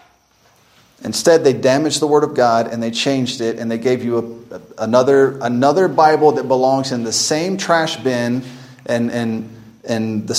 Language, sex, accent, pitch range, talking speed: English, male, American, 120-160 Hz, 185 wpm